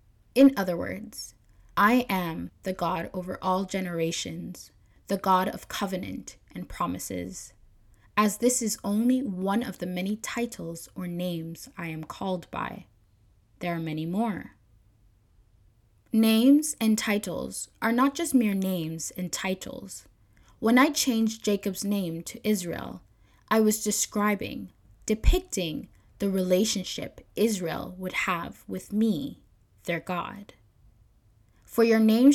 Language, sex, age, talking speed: English, female, 10-29, 125 wpm